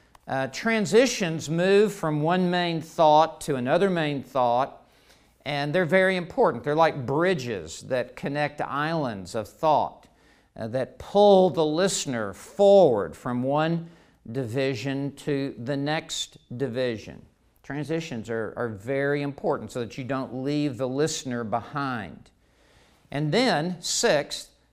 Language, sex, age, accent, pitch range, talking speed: English, male, 50-69, American, 125-165 Hz, 125 wpm